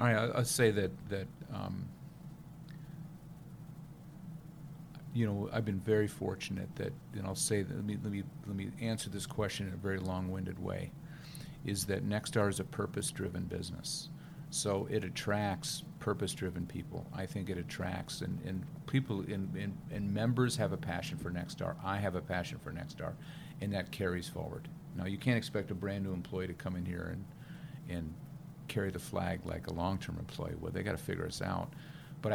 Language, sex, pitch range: English, male, 100-155 Hz